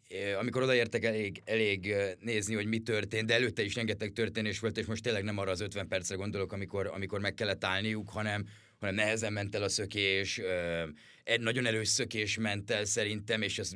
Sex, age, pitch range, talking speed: male, 30-49, 100-115 Hz, 190 wpm